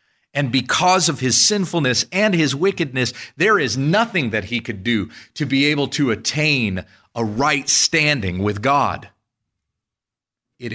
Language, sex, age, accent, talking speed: English, male, 40-59, American, 145 wpm